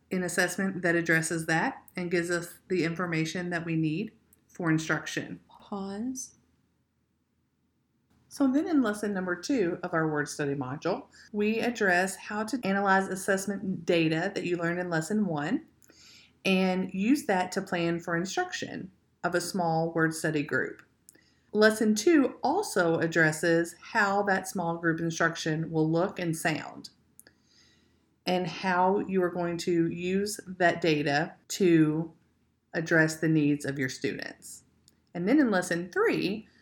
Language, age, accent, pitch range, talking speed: English, 40-59, American, 155-190 Hz, 145 wpm